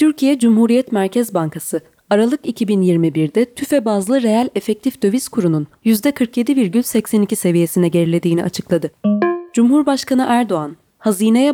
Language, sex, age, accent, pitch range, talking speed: Turkish, female, 30-49, native, 175-245 Hz, 100 wpm